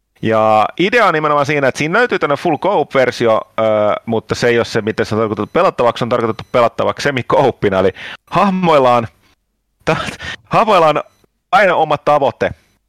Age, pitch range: 30-49, 110-145 Hz